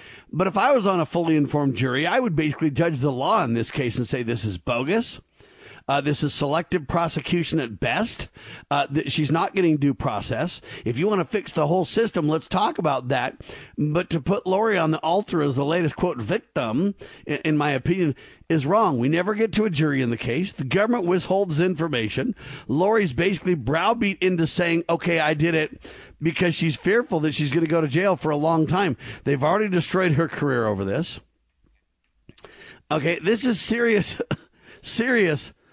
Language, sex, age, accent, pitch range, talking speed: English, male, 50-69, American, 150-195 Hz, 190 wpm